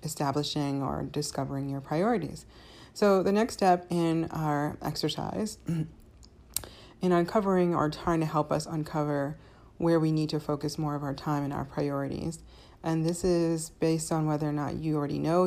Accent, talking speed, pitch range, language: American, 165 wpm, 150-170 Hz, English